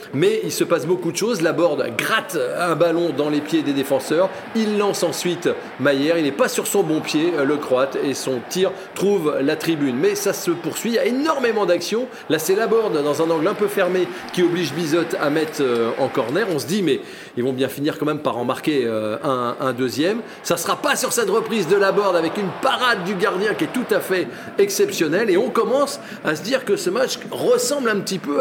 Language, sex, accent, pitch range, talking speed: French, male, French, 160-260 Hz, 230 wpm